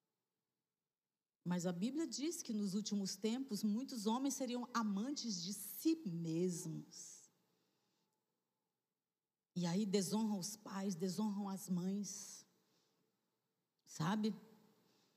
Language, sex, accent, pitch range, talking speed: Portuguese, female, Brazilian, 210-290 Hz, 95 wpm